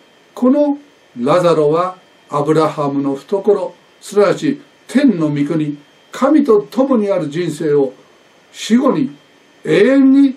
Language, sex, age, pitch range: Japanese, male, 60-79, 140-210 Hz